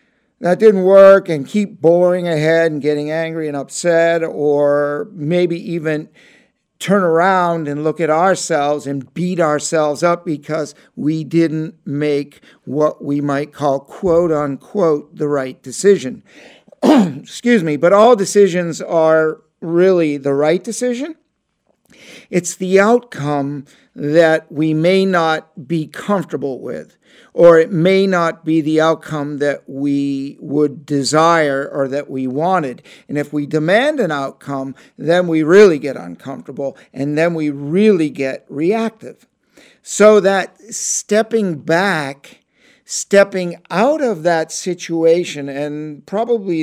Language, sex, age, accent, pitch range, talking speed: English, male, 50-69, American, 145-185 Hz, 130 wpm